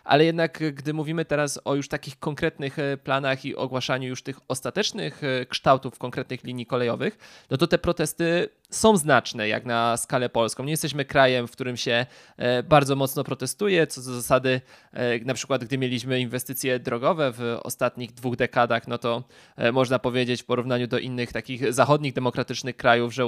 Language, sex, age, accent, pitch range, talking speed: Polish, male, 20-39, native, 125-145 Hz, 165 wpm